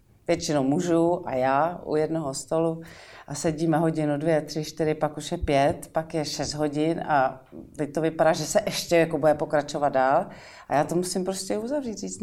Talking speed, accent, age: 195 wpm, native, 40-59